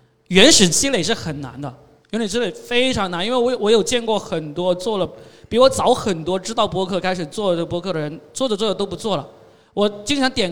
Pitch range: 165-225 Hz